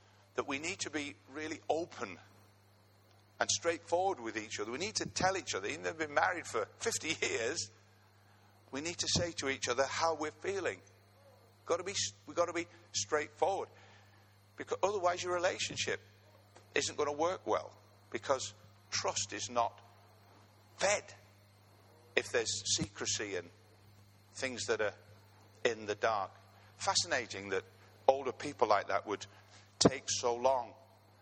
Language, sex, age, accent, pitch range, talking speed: English, male, 50-69, British, 100-135 Hz, 150 wpm